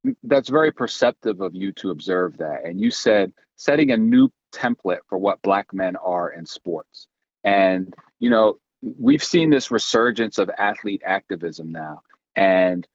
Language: English